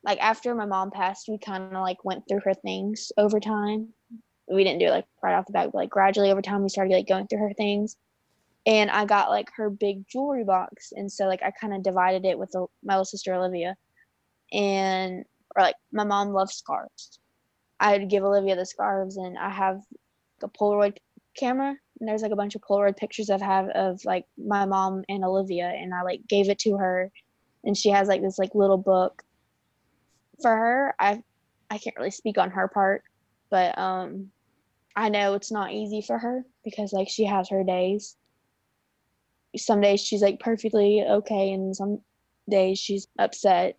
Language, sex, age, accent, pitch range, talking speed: English, female, 20-39, American, 190-210 Hz, 195 wpm